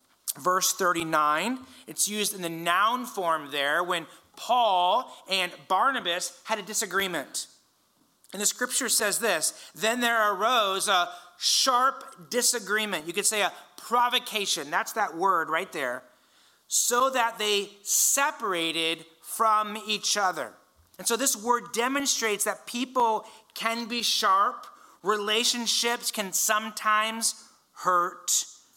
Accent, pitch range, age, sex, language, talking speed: American, 180-235 Hz, 30-49, male, English, 120 wpm